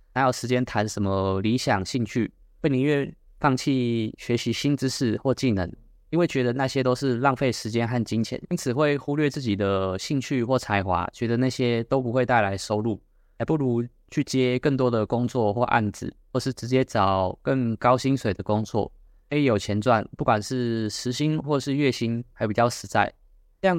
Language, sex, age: Chinese, male, 20-39